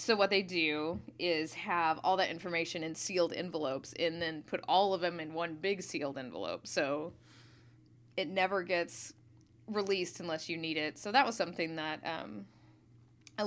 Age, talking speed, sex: 20-39, 175 wpm, female